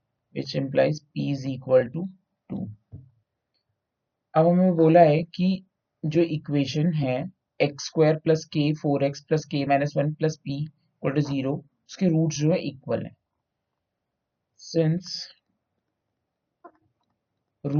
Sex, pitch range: male, 135-155 Hz